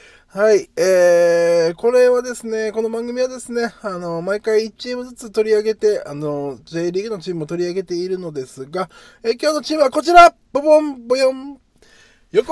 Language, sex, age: Japanese, male, 20-39